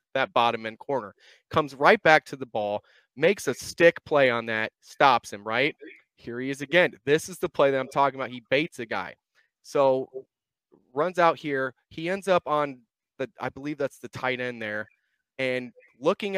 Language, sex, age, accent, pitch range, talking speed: English, male, 30-49, American, 125-165 Hz, 195 wpm